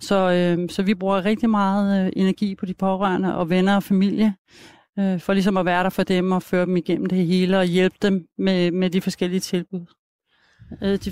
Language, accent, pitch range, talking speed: Danish, native, 165-205 Hz, 215 wpm